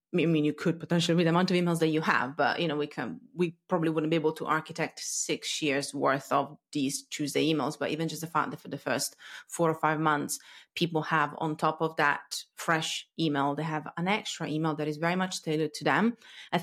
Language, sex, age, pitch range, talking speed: English, female, 30-49, 150-175 Hz, 240 wpm